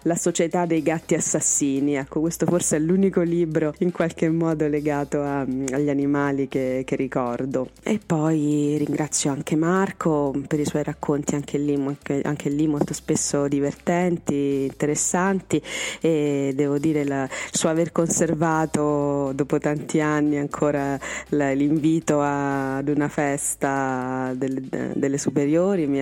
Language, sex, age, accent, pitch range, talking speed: Italian, female, 20-39, native, 135-155 Hz, 130 wpm